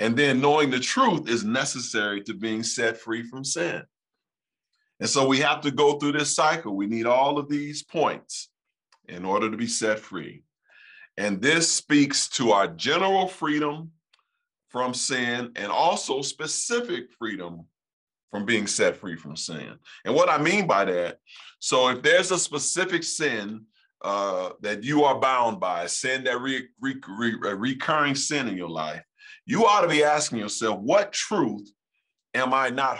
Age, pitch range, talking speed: 40-59, 115-155 Hz, 160 wpm